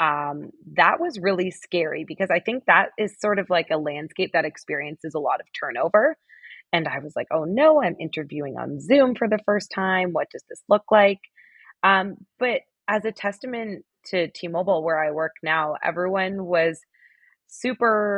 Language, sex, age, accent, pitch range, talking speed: English, female, 20-39, American, 155-205 Hz, 180 wpm